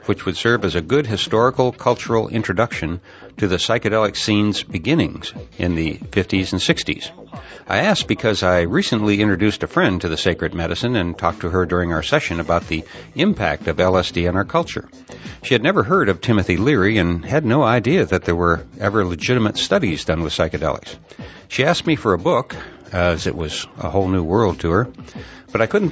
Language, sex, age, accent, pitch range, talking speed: English, male, 60-79, American, 85-115 Hz, 195 wpm